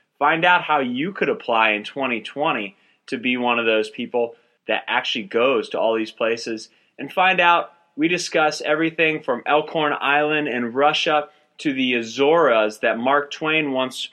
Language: English